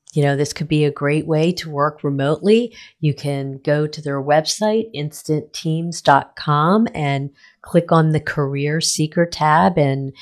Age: 40-59